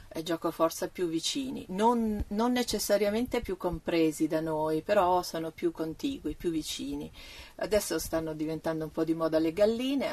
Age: 40-59